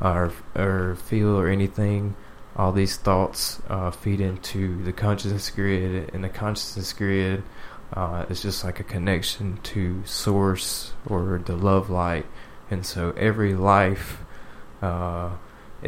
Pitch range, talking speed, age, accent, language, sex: 95-100 Hz, 130 wpm, 20-39, American, English, male